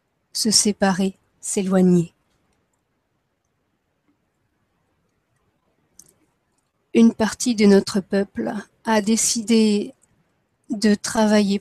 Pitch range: 195-220 Hz